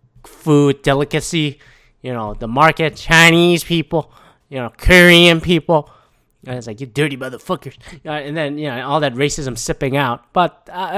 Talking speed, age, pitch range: 175 wpm, 20-39, 120-165 Hz